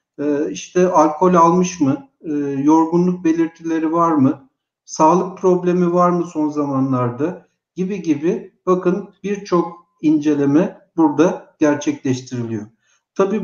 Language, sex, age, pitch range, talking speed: Turkish, male, 60-79, 150-185 Hz, 100 wpm